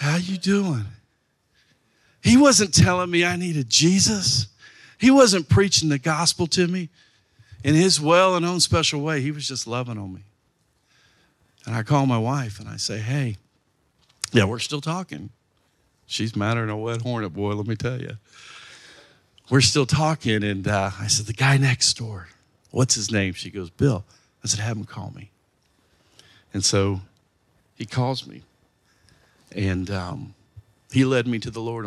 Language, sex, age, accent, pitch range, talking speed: English, male, 50-69, American, 100-135 Hz, 165 wpm